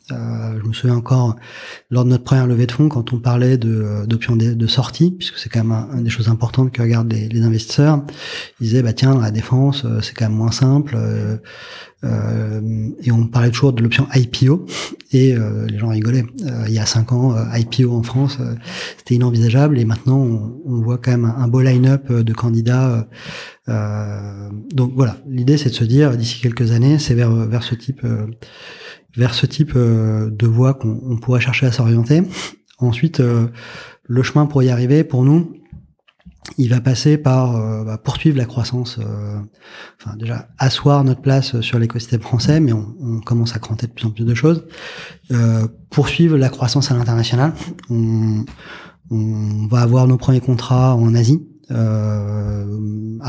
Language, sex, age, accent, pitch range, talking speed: French, male, 30-49, French, 115-130 Hz, 190 wpm